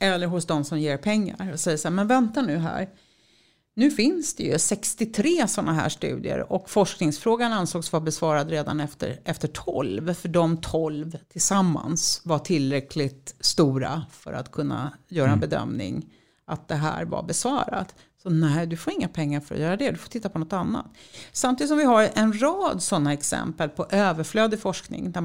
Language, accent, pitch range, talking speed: English, Swedish, 150-200 Hz, 180 wpm